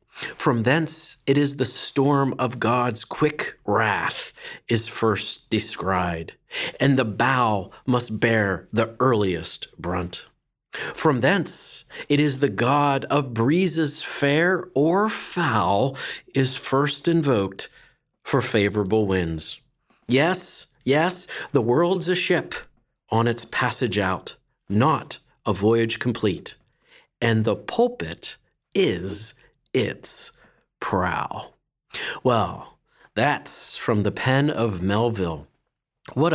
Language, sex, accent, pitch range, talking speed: English, male, American, 115-140 Hz, 110 wpm